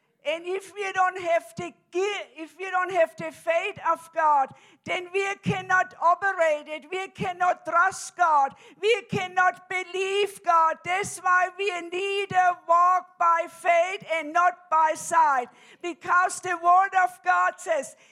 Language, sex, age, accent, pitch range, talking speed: English, female, 50-69, German, 350-400 Hz, 150 wpm